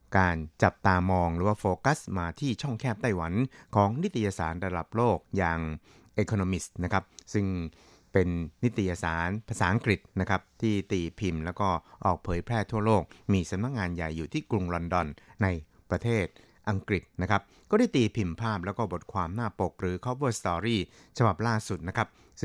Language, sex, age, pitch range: Thai, male, 60-79, 90-110 Hz